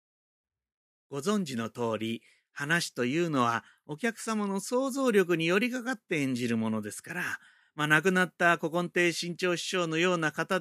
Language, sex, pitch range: Japanese, male, 125-195 Hz